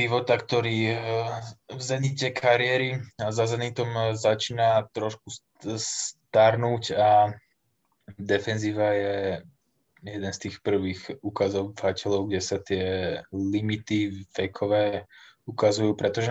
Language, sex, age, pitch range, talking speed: Slovak, male, 20-39, 95-110 Hz, 90 wpm